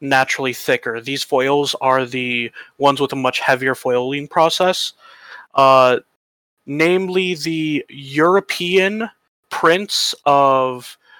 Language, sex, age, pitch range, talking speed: English, male, 30-49, 130-165 Hz, 100 wpm